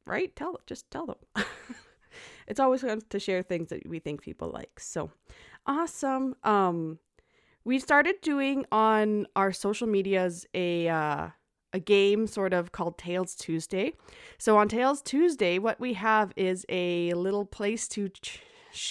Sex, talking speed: female, 155 wpm